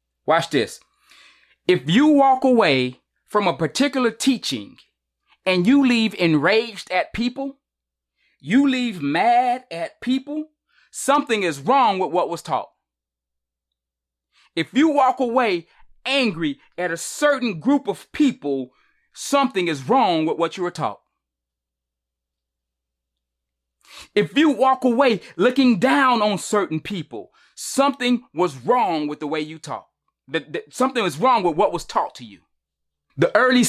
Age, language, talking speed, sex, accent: 30-49, English, 135 wpm, male, American